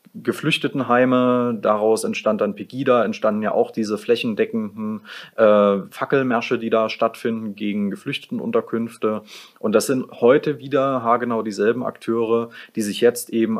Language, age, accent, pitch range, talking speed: German, 30-49, German, 100-125 Hz, 130 wpm